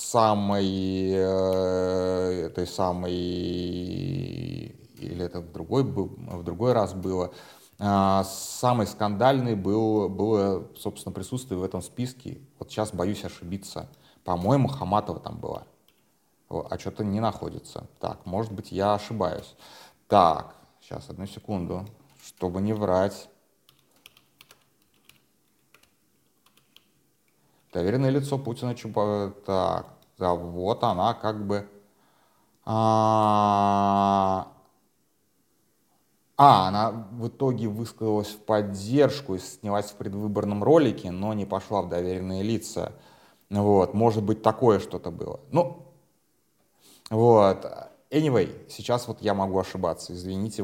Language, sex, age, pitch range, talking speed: Russian, male, 30-49, 95-110 Hz, 105 wpm